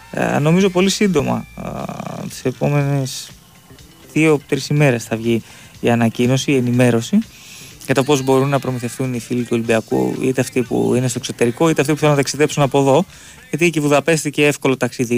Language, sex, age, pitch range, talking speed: Greek, male, 20-39, 120-145 Hz, 175 wpm